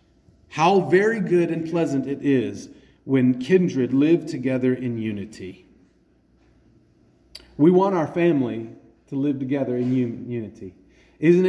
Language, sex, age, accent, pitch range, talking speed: English, male, 40-59, American, 125-175 Hz, 120 wpm